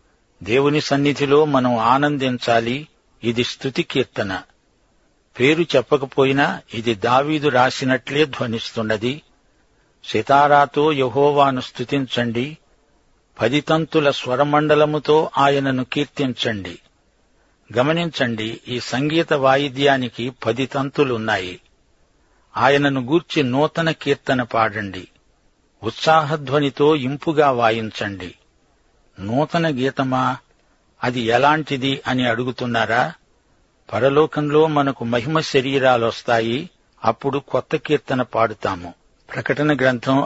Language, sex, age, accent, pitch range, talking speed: Telugu, male, 60-79, native, 125-150 Hz, 75 wpm